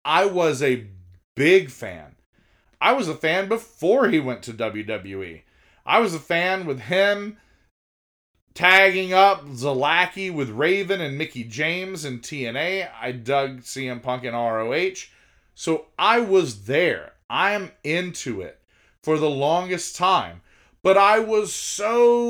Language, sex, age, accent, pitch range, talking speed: English, male, 30-49, American, 125-190 Hz, 135 wpm